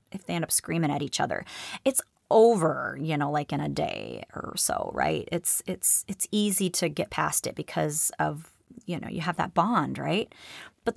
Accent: American